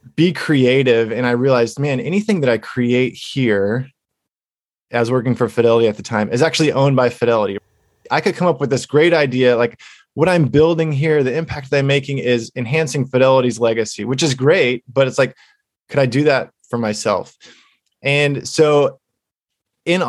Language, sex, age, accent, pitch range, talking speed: English, male, 20-39, American, 120-150 Hz, 180 wpm